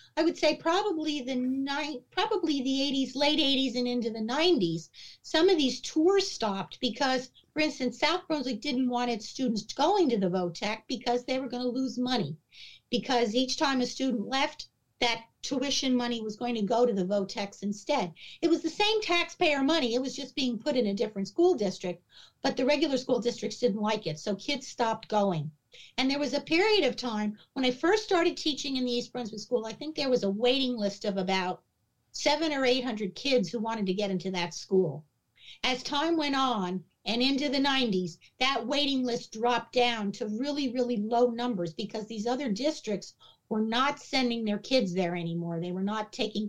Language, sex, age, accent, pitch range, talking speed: English, female, 50-69, American, 210-275 Hz, 195 wpm